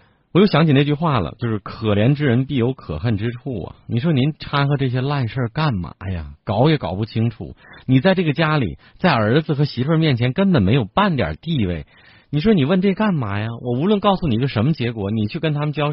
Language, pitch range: Chinese, 95-140 Hz